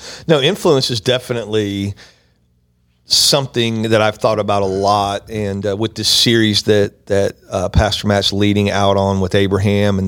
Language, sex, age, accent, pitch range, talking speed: English, male, 40-59, American, 95-110 Hz, 160 wpm